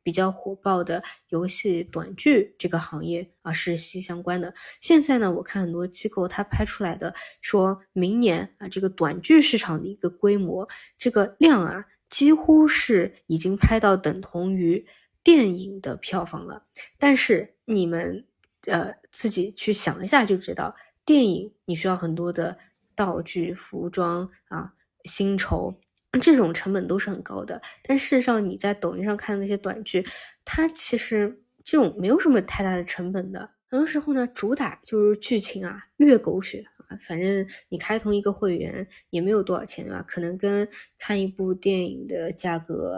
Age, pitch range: 20-39, 180-220 Hz